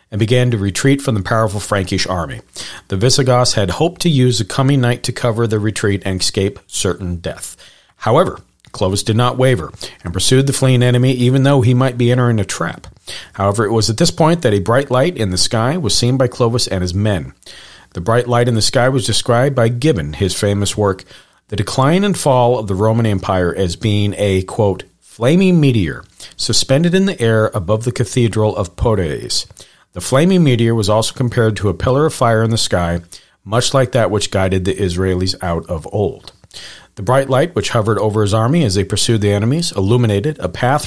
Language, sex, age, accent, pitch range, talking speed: English, male, 40-59, American, 100-130 Hz, 205 wpm